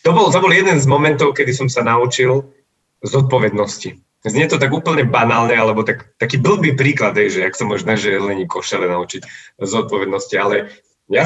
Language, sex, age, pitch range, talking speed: Slovak, male, 30-49, 115-140 Hz, 175 wpm